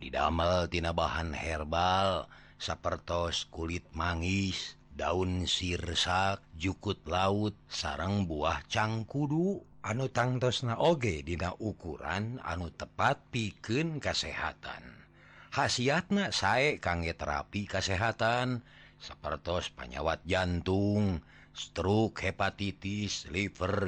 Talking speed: 90 wpm